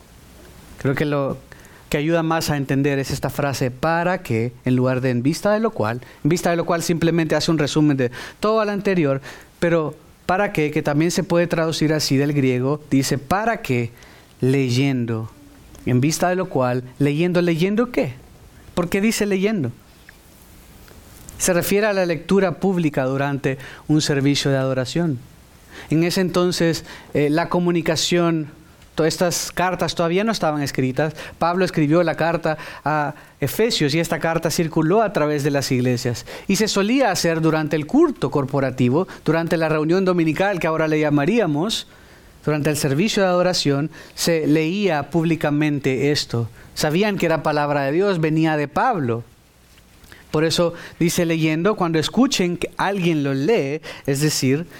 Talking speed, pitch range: 160 wpm, 140-175 Hz